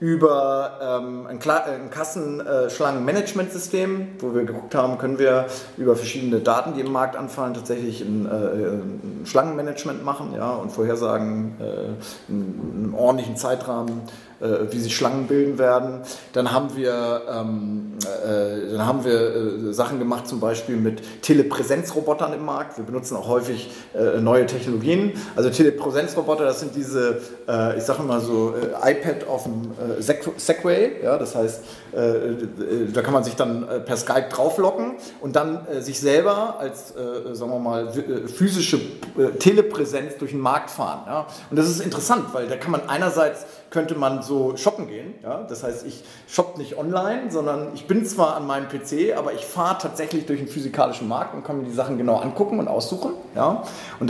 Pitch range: 120-155 Hz